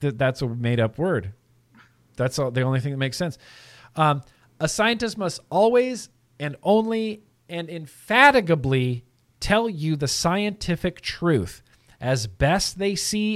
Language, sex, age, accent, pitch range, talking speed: English, male, 40-59, American, 125-185 Hz, 135 wpm